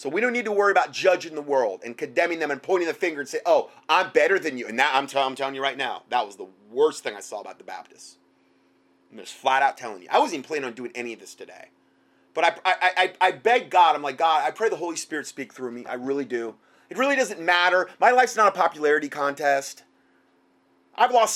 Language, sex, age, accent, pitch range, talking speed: English, male, 30-49, American, 120-185 Hz, 260 wpm